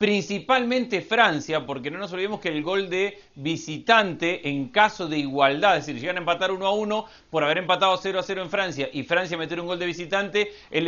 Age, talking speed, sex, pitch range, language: 40-59, 215 wpm, male, 155-210 Hz, Spanish